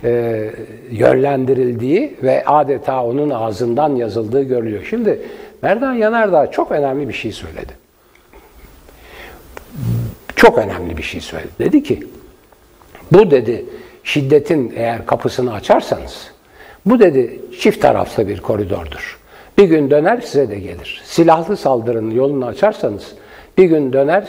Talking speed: 120 wpm